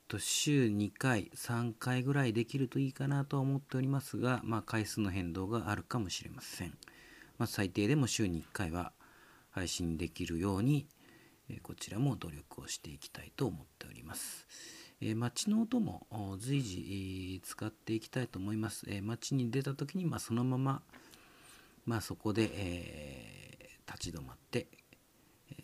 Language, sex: Japanese, male